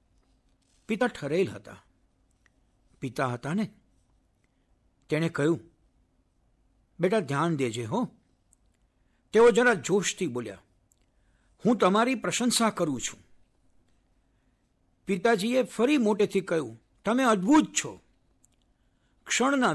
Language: Gujarati